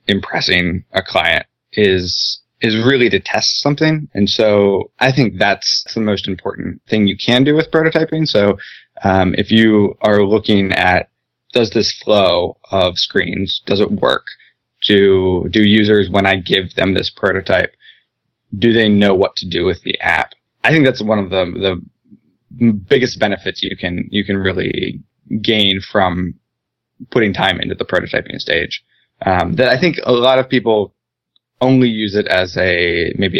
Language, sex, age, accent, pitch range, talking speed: English, male, 20-39, American, 95-115 Hz, 165 wpm